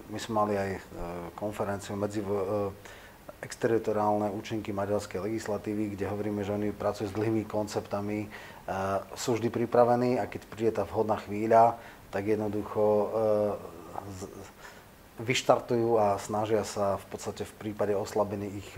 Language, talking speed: Slovak, 145 wpm